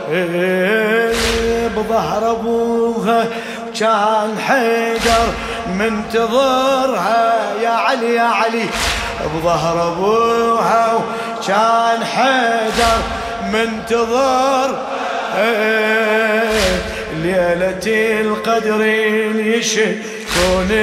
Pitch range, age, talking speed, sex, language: 220-230 Hz, 20-39, 50 wpm, male, Arabic